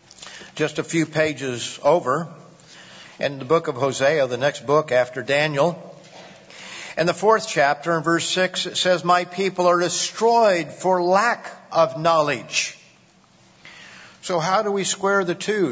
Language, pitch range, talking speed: English, 155-185 Hz, 150 wpm